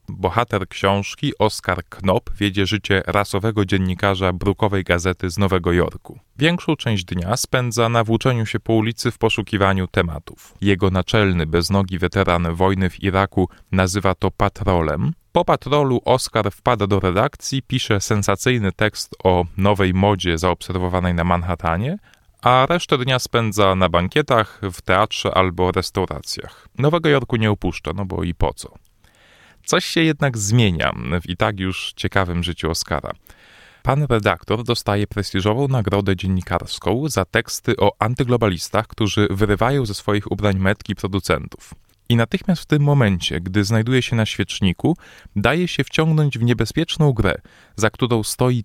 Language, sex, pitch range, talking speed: Polish, male, 95-120 Hz, 145 wpm